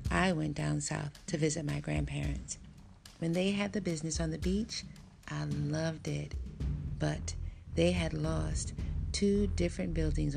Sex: female